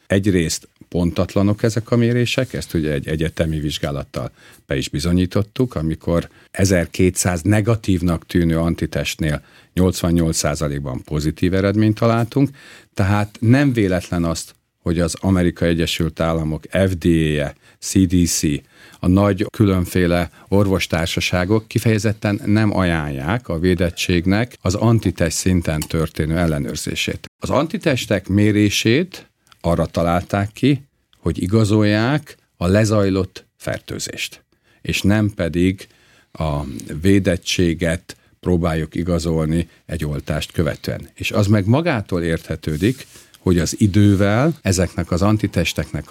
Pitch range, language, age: 85-105 Hz, Hungarian, 50-69